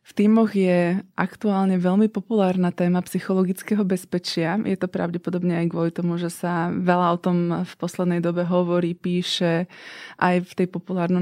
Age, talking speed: 20-39, 155 wpm